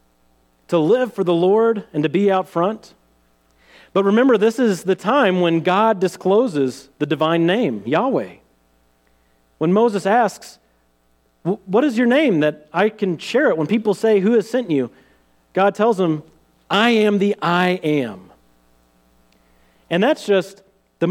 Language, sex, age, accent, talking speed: English, male, 40-59, American, 155 wpm